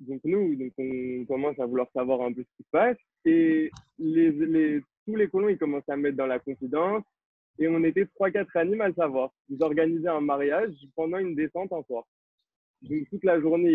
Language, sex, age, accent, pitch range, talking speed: French, male, 20-39, French, 135-165 Hz, 210 wpm